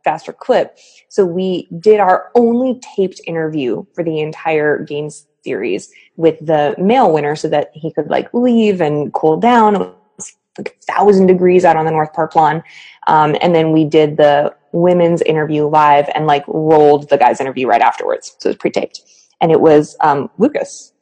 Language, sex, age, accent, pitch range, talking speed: English, female, 20-39, American, 160-210 Hz, 185 wpm